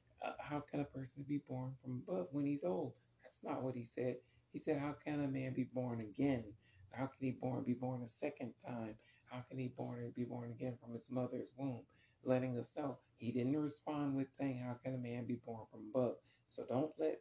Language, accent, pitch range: English, American, 120-135 Hz